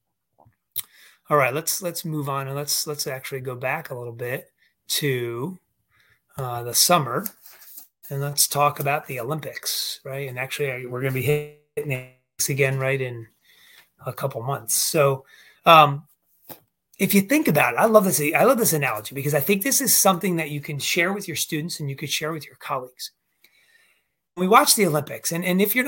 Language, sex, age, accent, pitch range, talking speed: English, male, 30-49, American, 135-175 Hz, 190 wpm